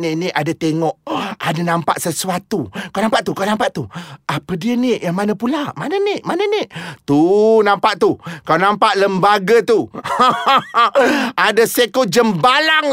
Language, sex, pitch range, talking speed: Malay, male, 185-285 Hz, 150 wpm